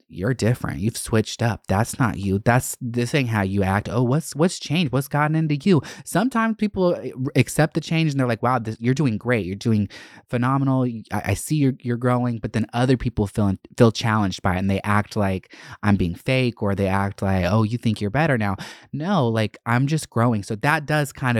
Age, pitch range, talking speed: 20-39, 105-130 Hz, 220 wpm